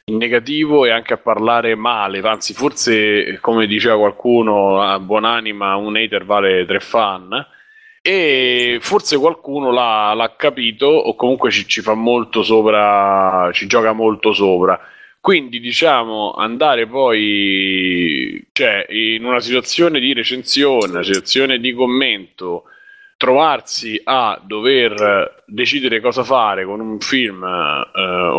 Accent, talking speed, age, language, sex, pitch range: native, 125 wpm, 30-49, Italian, male, 105-130 Hz